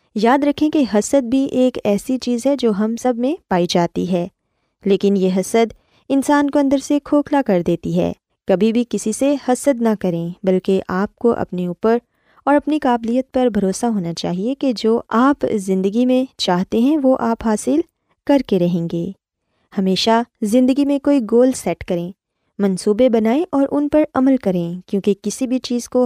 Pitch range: 190-260 Hz